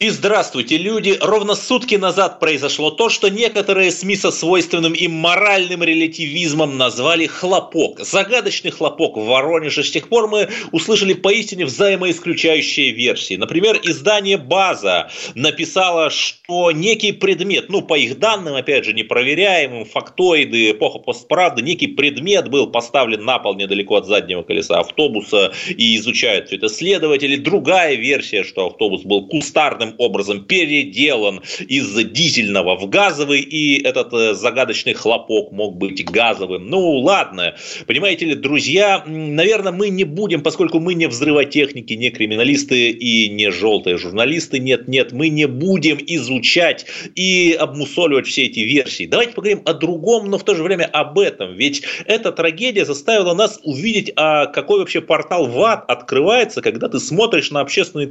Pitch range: 150-205 Hz